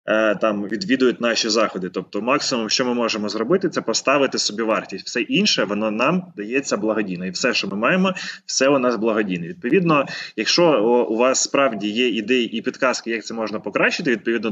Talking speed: 180 wpm